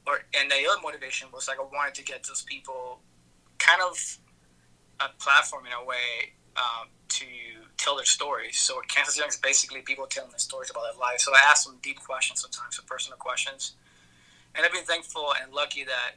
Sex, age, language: male, 20-39, English